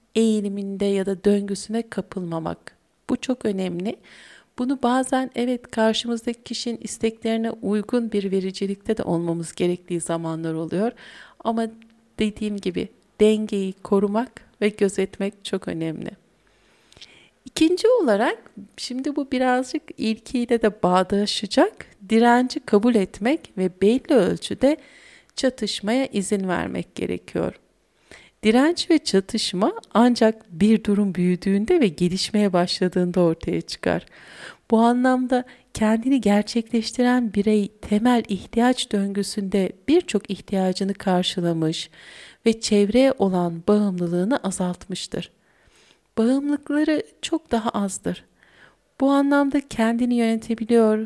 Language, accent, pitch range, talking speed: Turkish, native, 195-245 Hz, 100 wpm